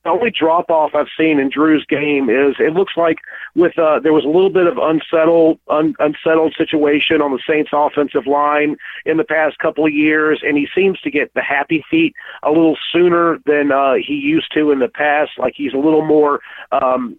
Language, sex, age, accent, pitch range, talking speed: English, male, 40-59, American, 135-155 Hz, 215 wpm